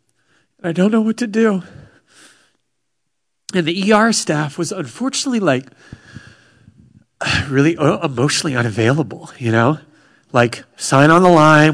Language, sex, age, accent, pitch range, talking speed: English, male, 30-49, American, 115-160 Hz, 120 wpm